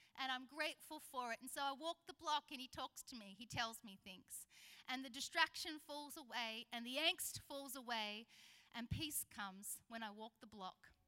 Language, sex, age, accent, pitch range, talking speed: English, female, 30-49, Australian, 230-290 Hz, 205 wpm